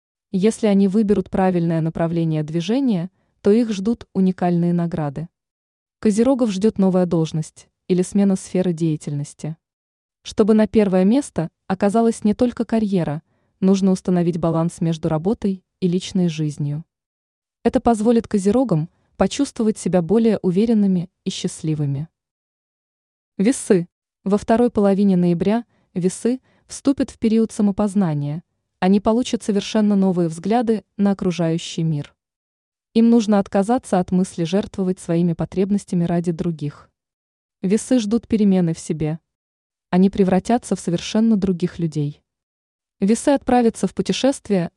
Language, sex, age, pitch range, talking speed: Russian, female, 20-39, 170-215 Hz, 115 wpm